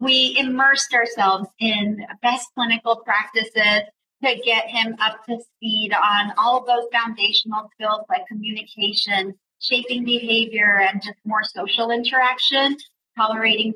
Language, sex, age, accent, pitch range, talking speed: English, female, 40-59, American, 200-245 Hz, 125 wpm